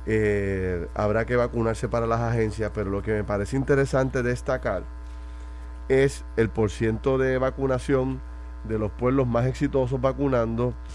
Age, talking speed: 30-49, 135 wpm